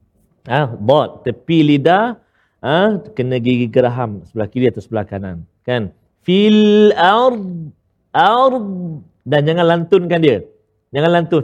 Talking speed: 120 wpm